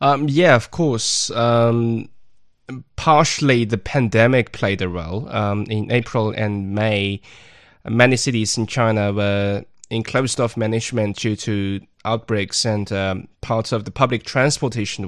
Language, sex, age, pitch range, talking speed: English, male, 20-39, 110-150 Hz, 135 wpm